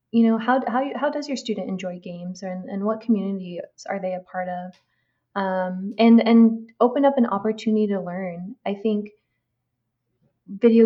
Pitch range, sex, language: 185-215 Hz, female, English